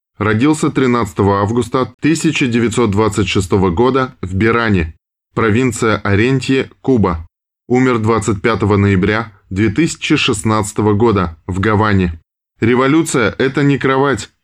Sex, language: male, Russian